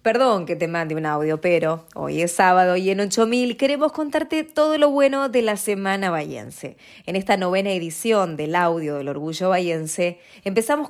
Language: English